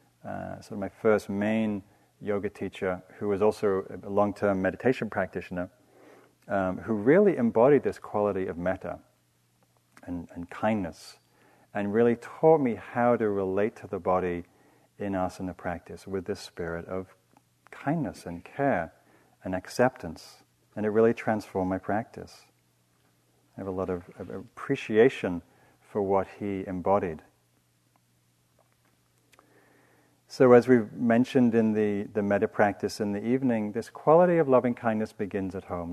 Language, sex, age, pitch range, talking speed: English, male, 40-59, 85-110 Hz, 140 wpm